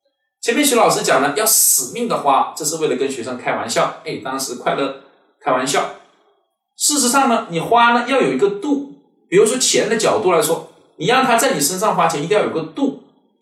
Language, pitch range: Chinese, 180-265 Hz